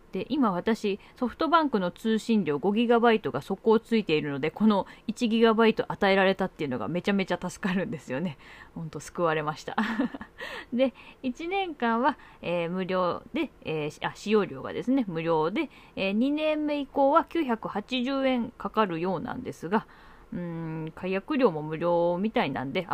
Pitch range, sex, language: 175-235 Hz, female, Japanese